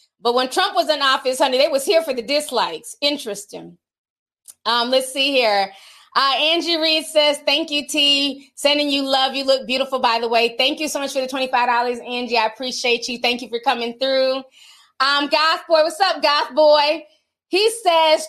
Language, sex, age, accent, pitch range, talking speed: English, female, 20-39, American, 245-300 Hz, 195 wpm